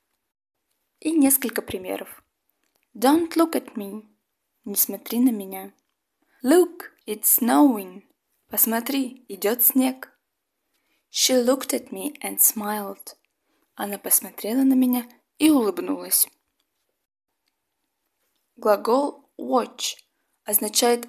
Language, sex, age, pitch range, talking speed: Russian, female, 20-39, 205-270 Hz, 90 wpm